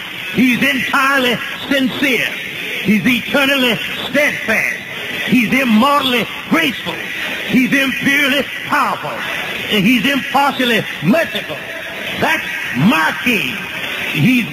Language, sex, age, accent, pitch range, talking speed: English, male, 60-79, American, 215-275 Hz, 85 wpm